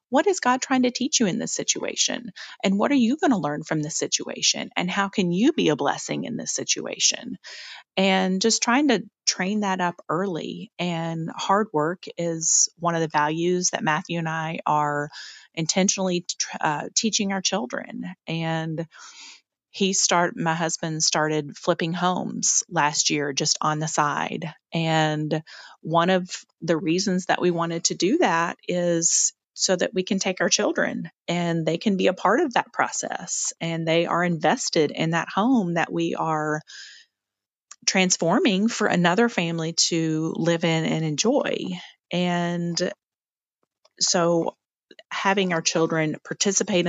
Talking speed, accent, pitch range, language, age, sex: 155 wpm, American, 160-195 Hz, English, 30-49, female